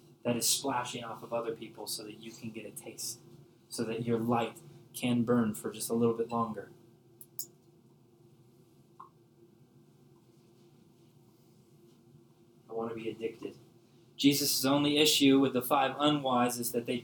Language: English